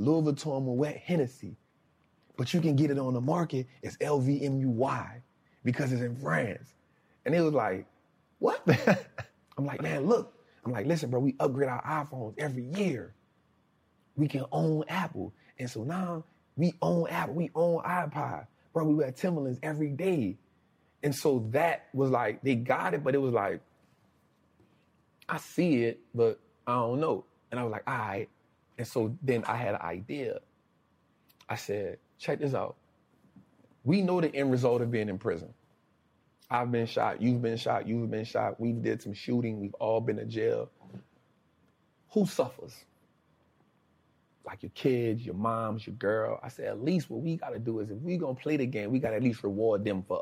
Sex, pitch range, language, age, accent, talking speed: male, 115-150 Hz, English, 30-49, American, 185 wpm